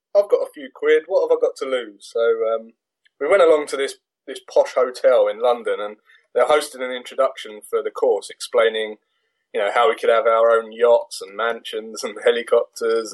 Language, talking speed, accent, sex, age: English, 205 wpm, British, male, 20-39